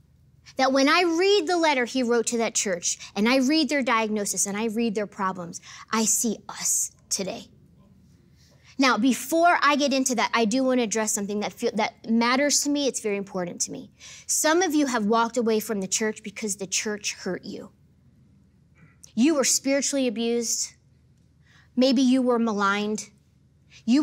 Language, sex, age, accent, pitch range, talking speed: English, female, 20-39, American, 215-275 Hz, 175 wpm